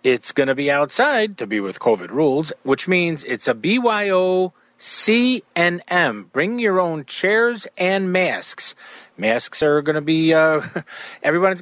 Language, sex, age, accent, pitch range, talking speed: English, male, 40-59, American, 150-215 Hz, 150 wpm